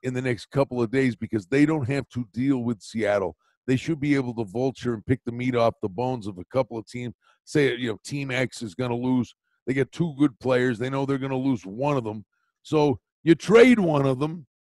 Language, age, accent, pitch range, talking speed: English, 50-69, American, 120-155 Hz, 250 wpm